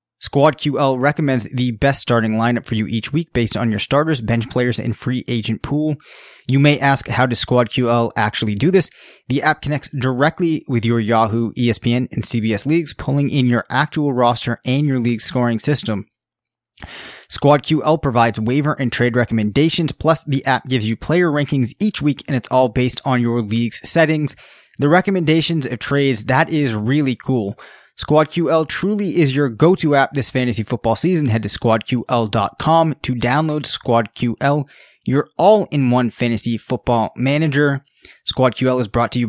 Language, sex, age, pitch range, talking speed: English, male, 20-39, 120-150 Hz, 165 wpm